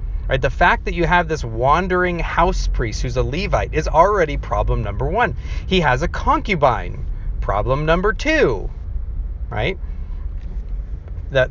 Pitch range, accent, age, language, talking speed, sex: 110-145 Hz, American, 30-49, English, 140 wpm, male